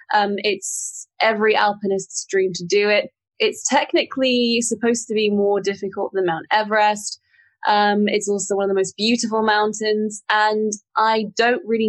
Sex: female